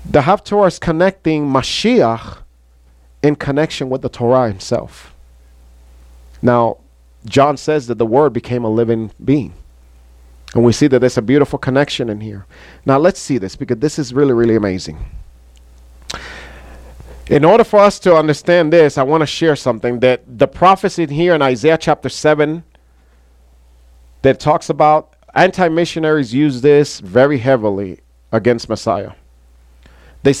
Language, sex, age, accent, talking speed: English, male, 40-59, American, 145 wpm